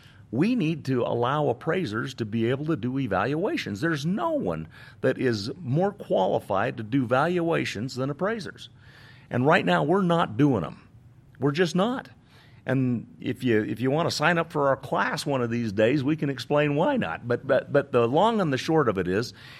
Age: 50-69